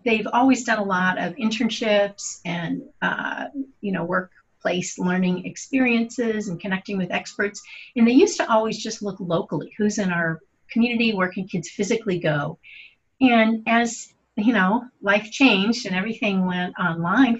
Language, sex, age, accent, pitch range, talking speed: English, female, 40-59, American, 170-225 Hz, 155 wpm